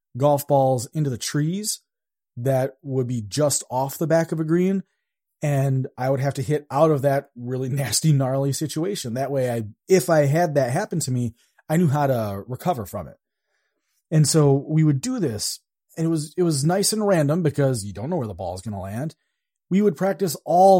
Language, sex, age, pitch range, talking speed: English, male, 30-49, 125-165 Hz, 215 wpm